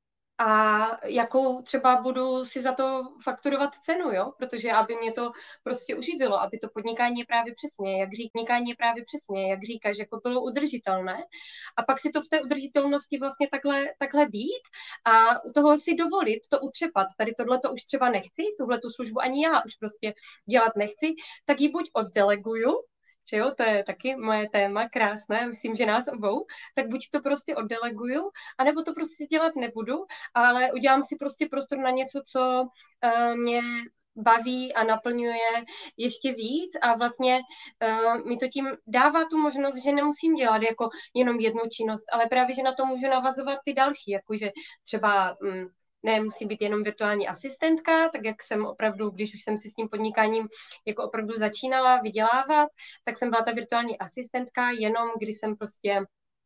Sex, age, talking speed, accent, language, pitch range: female, 20-39, 170 wpm, native, Czech, 225-280 Hz